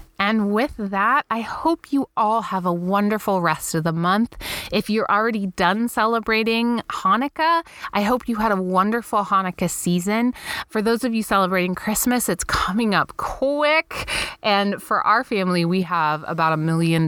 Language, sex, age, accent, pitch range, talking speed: English, female, 20-39, American, 170-225 Hz, 165 wpm